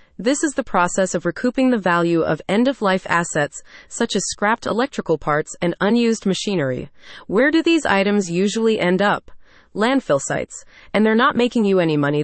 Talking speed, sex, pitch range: 175 wpm, female, 170-235 Hz